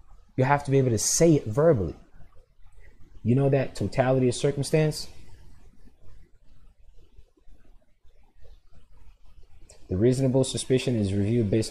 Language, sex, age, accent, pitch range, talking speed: English, male, 20-39, American, 95-140 Hz, 110 wpm